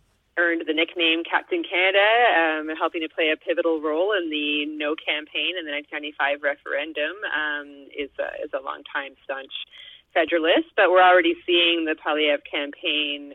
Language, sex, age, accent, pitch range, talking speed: English, female, 30-49, American, 145-175 Hz, 160 wpm